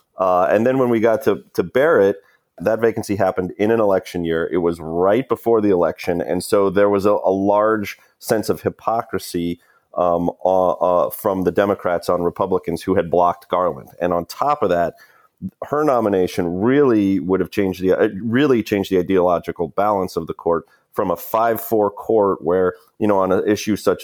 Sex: male